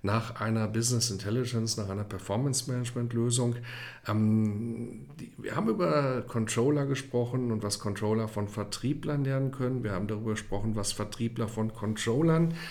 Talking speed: 130 wpm